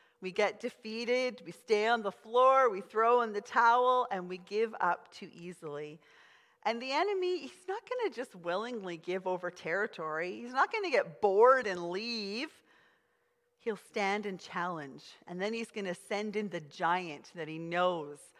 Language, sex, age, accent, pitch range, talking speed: English, female, 40-59, American, 175-235 Hz, 180 wpm